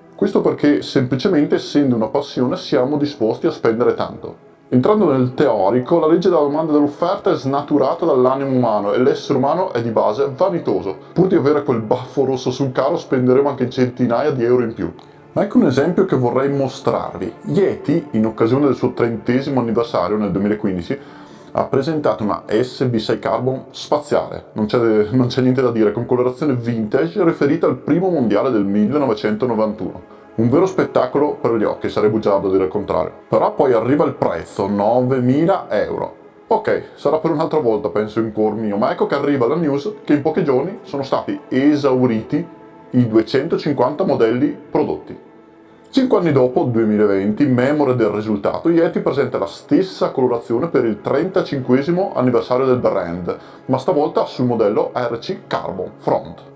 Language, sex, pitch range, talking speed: Italian, male, 110-145 Hz, 160 wpm